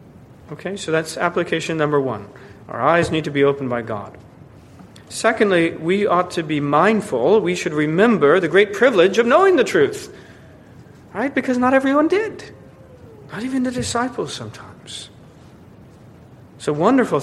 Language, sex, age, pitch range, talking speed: English, male, 40-59, 145-200 Hz, 150 wpm